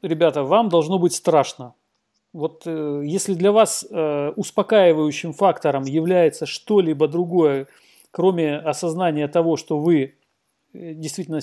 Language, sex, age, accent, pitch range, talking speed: Russian, male, 40-59, native, 145-175 Hz, 115 wpm